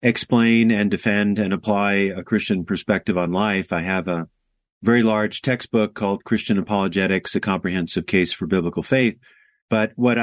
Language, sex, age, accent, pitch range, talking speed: English, male, 40-59, American, 90-110 Hz, 160 wpm